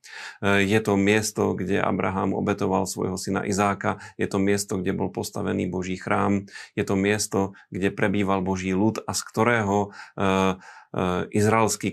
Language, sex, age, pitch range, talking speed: Slovak, male, 30-49, 95-105 Hz, 140 wpm